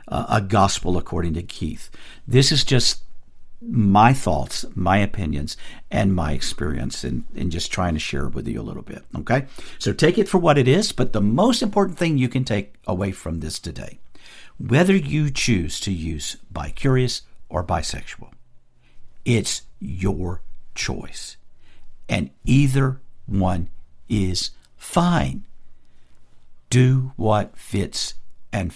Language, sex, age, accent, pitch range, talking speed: English, male, 50-69, American, 85-125 Hz, 140 wpm